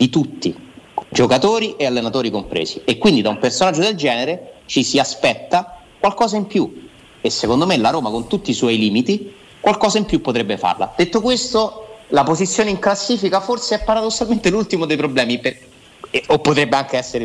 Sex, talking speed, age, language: male, 180 wpm, 30-49, Italian